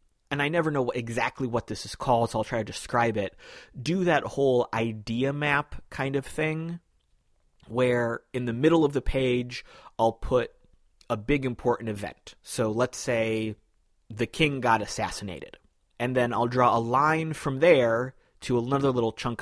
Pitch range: 110-135 Hz